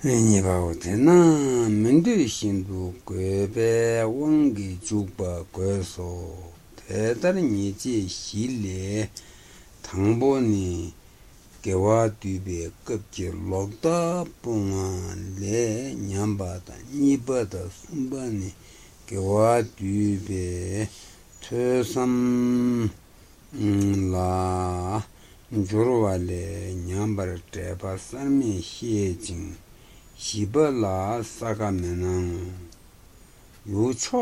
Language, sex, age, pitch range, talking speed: Italian, male, 60-79, 90-110 Hz, 40 wpm